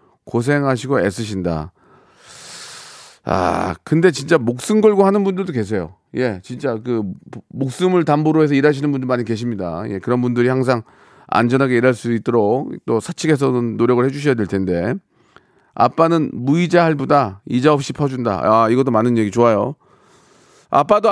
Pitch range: 115-160 Hz